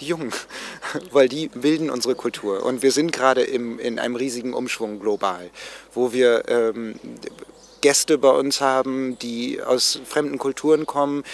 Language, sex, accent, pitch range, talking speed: English, male, German, 120-145 Hz, 155 wpm